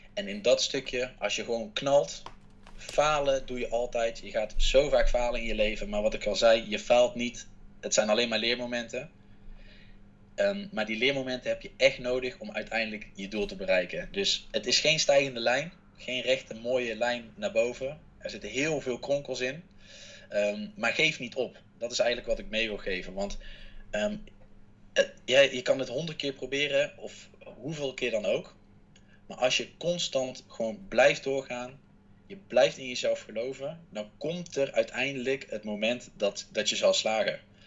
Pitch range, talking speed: 110-140 Hz, 180 wpm